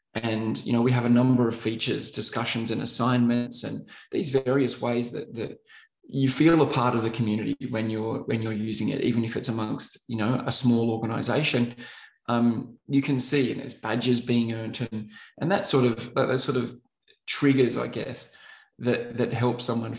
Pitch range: 115-130 Hz